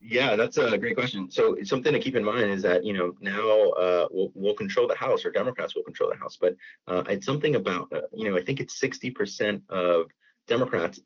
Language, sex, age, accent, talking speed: English, male, 30-49, American, 240 wpm